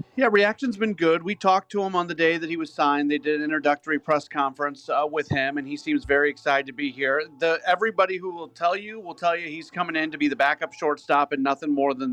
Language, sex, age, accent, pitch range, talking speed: English, male, 40-59, American, 145-165 Hz, 255 wpm